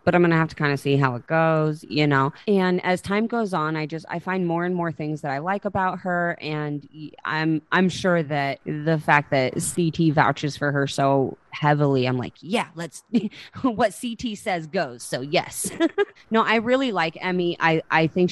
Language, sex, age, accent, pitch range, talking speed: English, female, 30-49, American, 140-170 Hz, 210 wpm